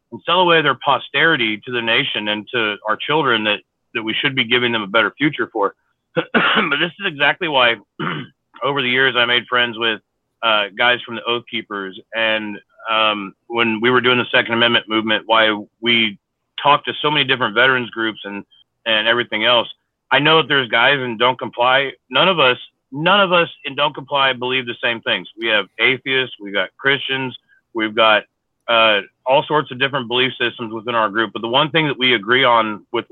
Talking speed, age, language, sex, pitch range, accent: 205 wpm, 40-59, English, male, 110-130 Hz, American